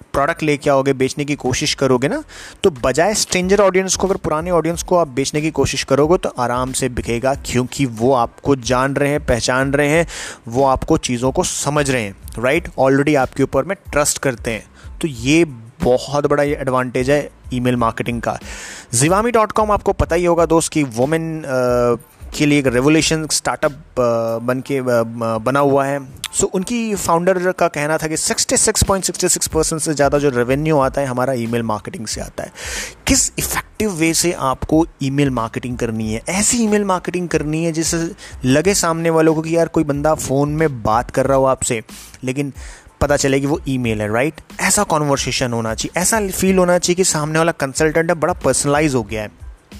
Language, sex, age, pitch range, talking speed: Hindi, male, 30-49, 130-165 Hz, 185 wpm